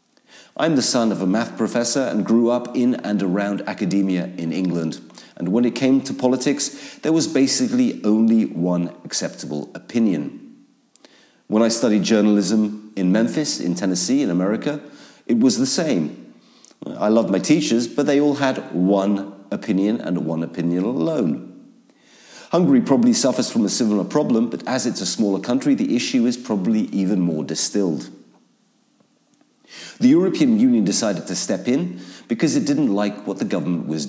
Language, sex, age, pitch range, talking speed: English, male, 40-59, 90-130 Hz, 160 wpm